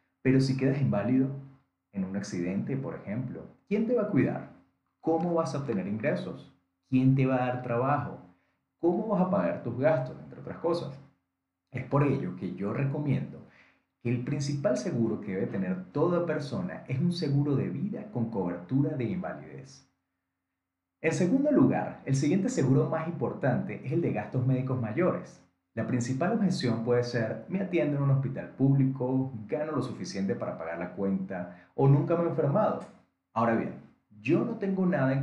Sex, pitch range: male, 105-150 Hz